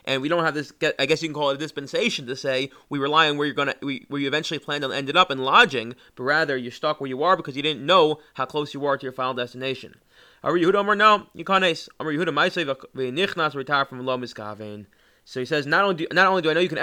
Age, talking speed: 30-49, 225 wpm